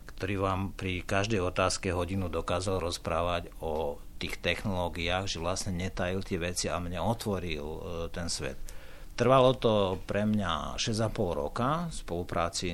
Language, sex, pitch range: Slovak, male, 80-100 Hz